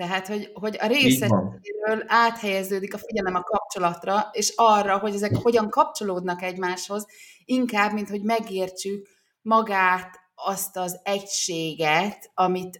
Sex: female